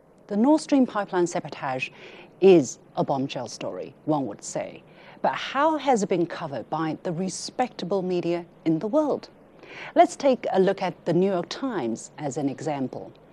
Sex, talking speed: female, 165 wpm